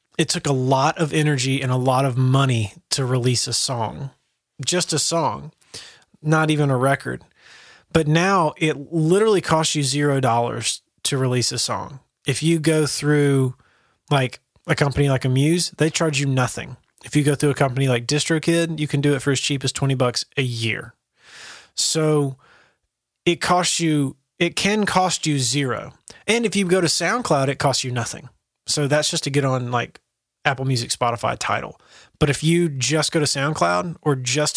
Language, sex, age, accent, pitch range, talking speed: English, male, 20-39, American, 130-155 Hz, 180 wpm